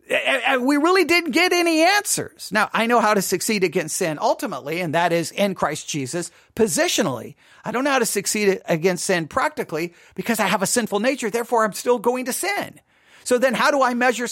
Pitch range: 190-260 Hz